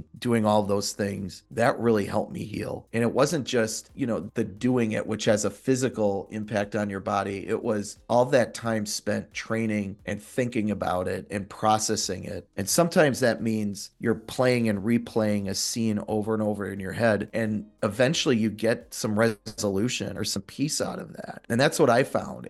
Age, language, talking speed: 40-59, English, 195 wpm